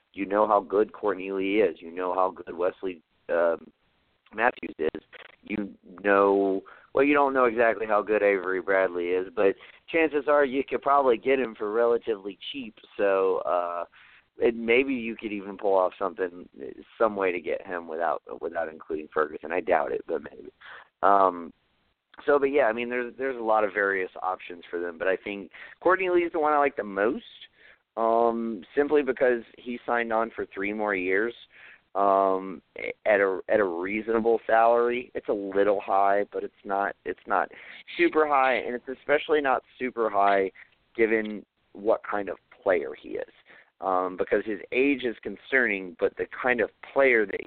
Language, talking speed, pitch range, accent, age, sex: English, 180 wpm, 95-135 Hz, American, 40-59, male